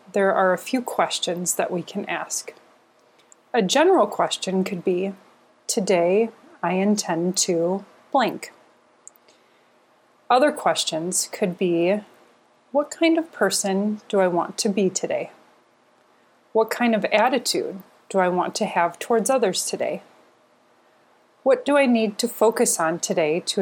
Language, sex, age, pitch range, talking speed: English, female, 30-49, 180-240 Hz, 135 wpm